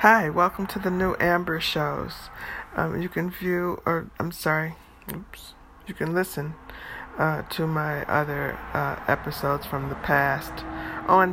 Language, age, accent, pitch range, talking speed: English, 50-69, American, 140-160 Hz, 150 wpm